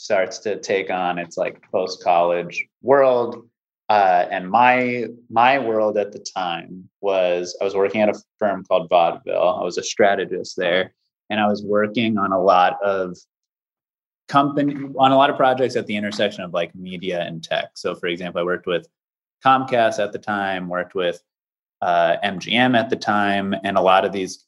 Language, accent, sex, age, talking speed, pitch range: English, American, male, 30-49, 180 wpm, 90-115 Hz